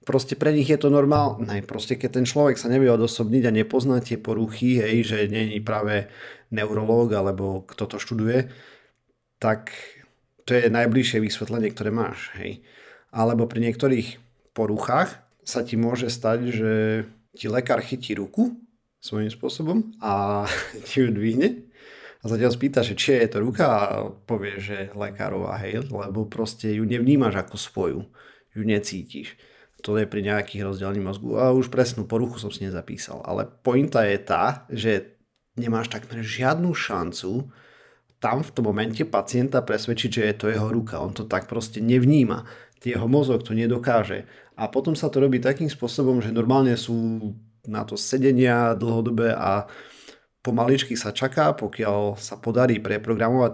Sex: male